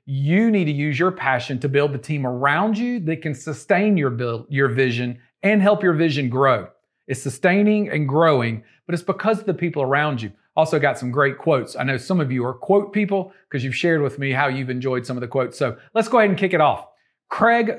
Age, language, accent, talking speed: 40-59, English, American, 235 wpm